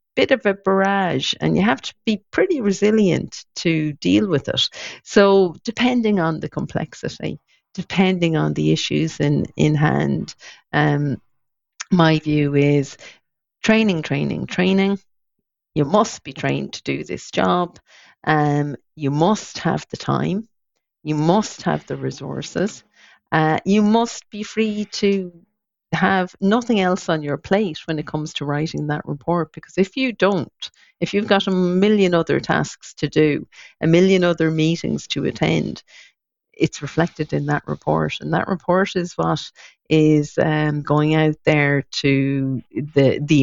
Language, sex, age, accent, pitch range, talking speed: English, female, 50-69, British, 145-195 Hz, 150 wpm